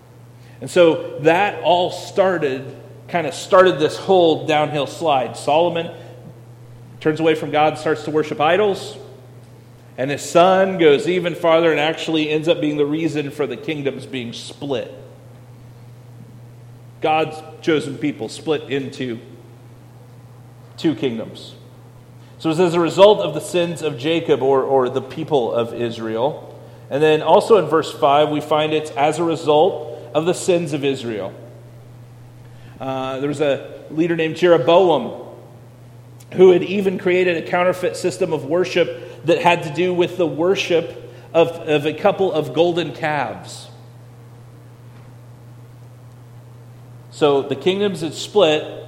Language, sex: English, male